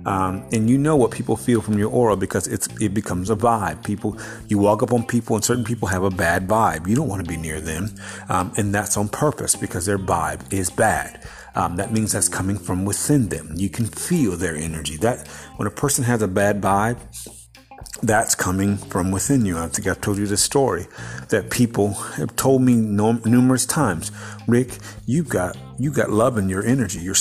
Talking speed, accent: 215 wpm, American